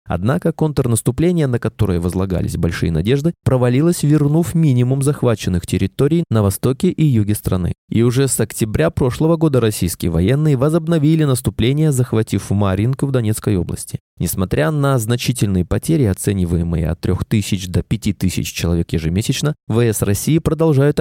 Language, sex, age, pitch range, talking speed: Russian, male, 20-39, 95-145 Hz, 130 wpm